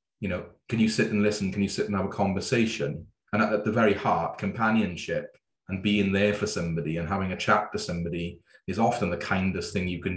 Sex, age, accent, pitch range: male, 30-49, British, 90-105 Hz